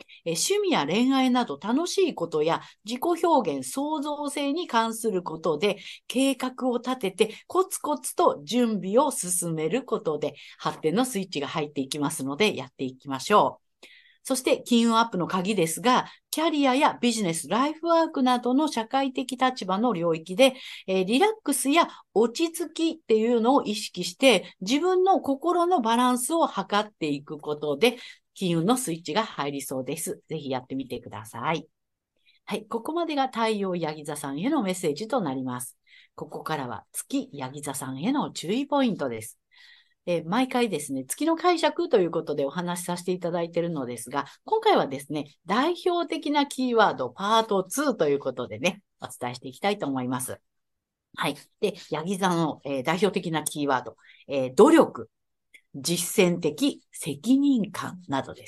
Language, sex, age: Japanese, female, 50-69